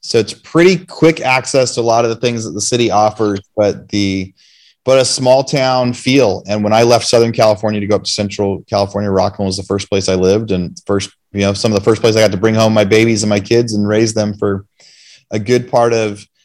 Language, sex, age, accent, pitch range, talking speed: English, male, 30-49, American, 100-125 Hz, 250 wpm